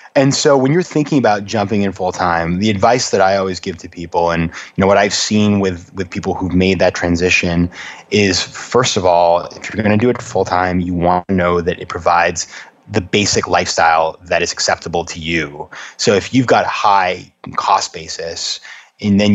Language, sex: English, male